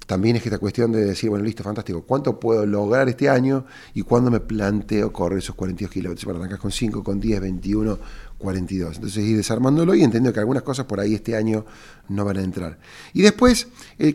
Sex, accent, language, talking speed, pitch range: male, Argentinian, Spanish, 210 wpm, 100-130 Hz